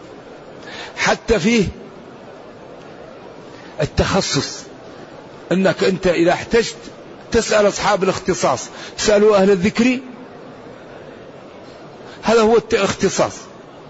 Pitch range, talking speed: 170-210 Hz, 70 wpm